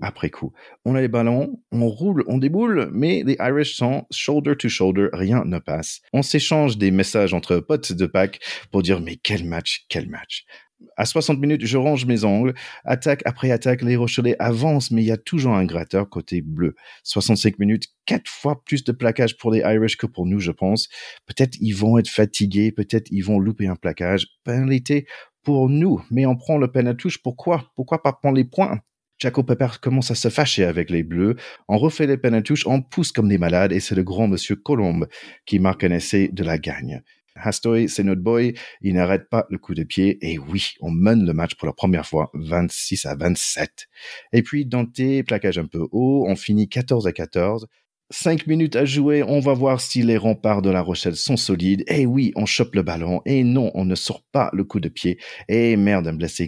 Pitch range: 95-130 Hz